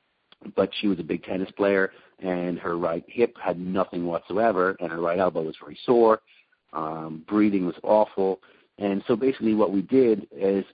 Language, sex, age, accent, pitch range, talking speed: English, male, 40-59, American, 90-105 Hz, 180 wpm